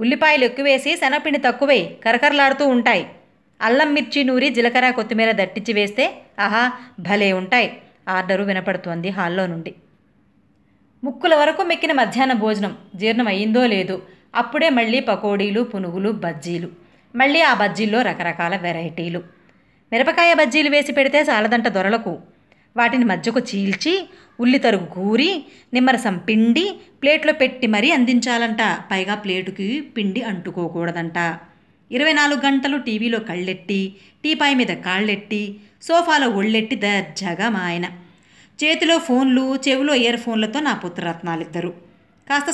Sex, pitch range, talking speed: female, 190-265 Hz, 110 wpm